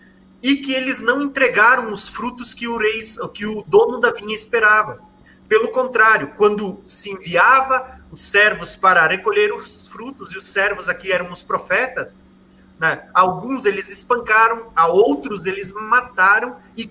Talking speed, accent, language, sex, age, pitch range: 155 wpm, Brazilian, Portuguese, male, 30-49, 195-260 Hz